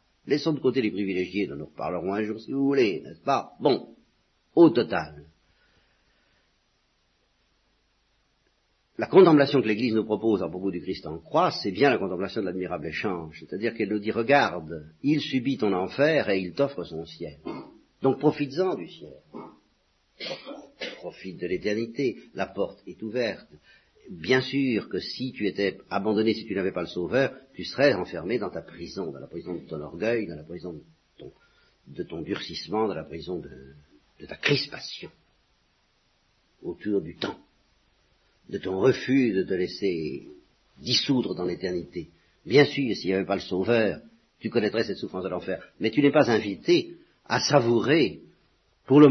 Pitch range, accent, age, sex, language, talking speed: 90-130 Hz, French, 50-69, male, French, 170 wpm